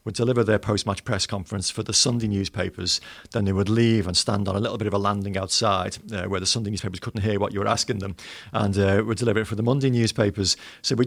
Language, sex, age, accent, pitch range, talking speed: English, male, 40-59, British, 100-120 Hz, 255 wpm